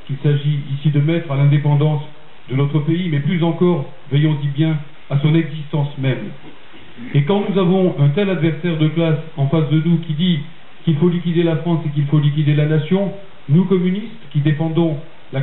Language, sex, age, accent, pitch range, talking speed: French, male, 40-59, French, 150-175 Hz, 195 wpm